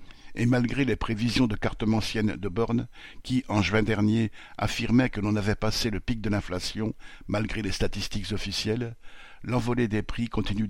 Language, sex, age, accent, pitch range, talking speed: French, male, 60-79, French, 100-115 Hz, 165 wpm